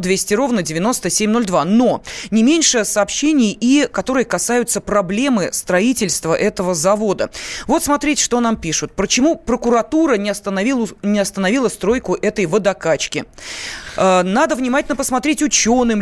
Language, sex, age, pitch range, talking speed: Russian, female, 20-39, 195-245 Hz, 115 wpm